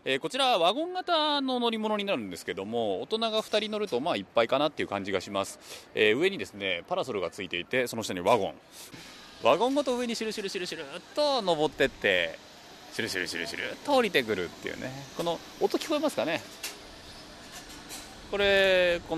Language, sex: Japanese, male